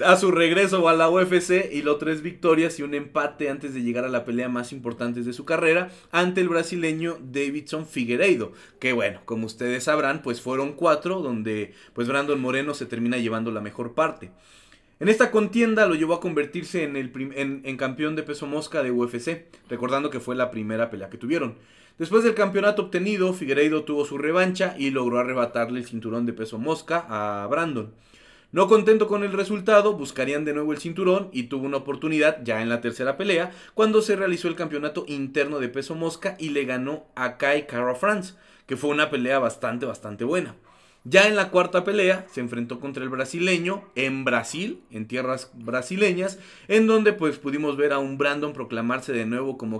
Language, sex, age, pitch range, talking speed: Spanish, male, 30-49, 125-180 Hz, 190 wpm